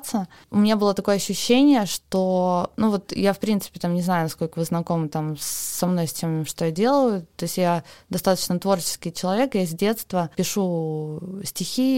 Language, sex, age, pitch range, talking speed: Russian, female, 20-39, 165-195 Hz, 170 wpm